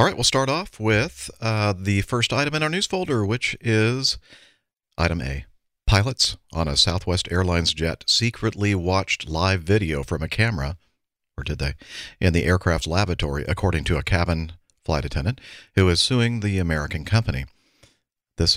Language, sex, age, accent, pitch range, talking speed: English, male, 50-69, American, 80-105 Hz, 165 wpm